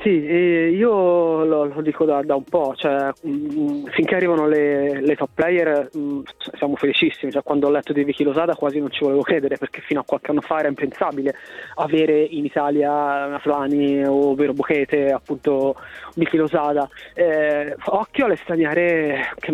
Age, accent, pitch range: 20-39, native, 145-180 Hz